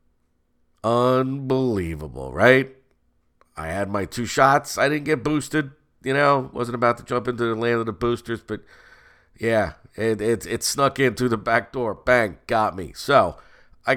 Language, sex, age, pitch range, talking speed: English, male, 50-69, 95-125 Hz, 170 wpm